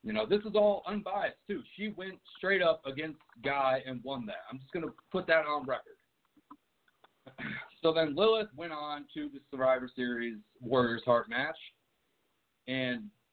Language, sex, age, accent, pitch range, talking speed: English, male, 50-69, American, 130-185 Hz, 165 wpm